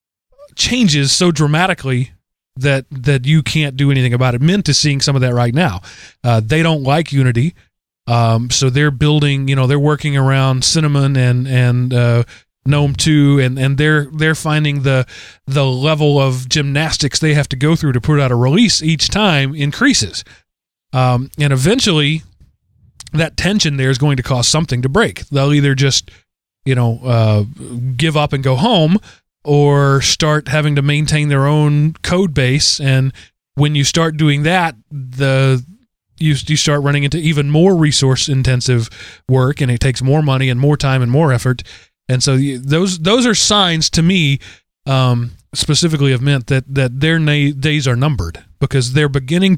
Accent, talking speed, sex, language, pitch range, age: American, 175 wpm, male, English, 130-155 Hz, 30-49